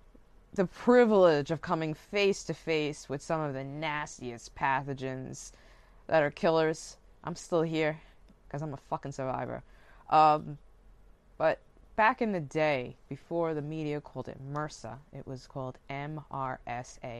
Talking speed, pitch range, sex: 140 wpm, 135-170 Hz, female